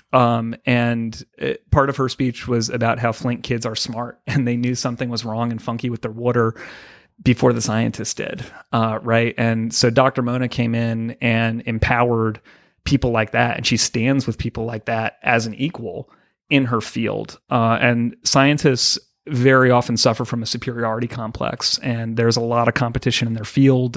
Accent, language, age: American, English, 30-49